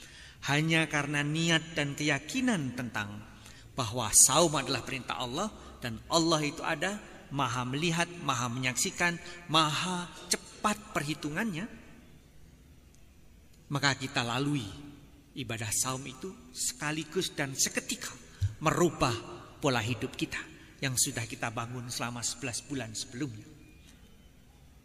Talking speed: 105 wpm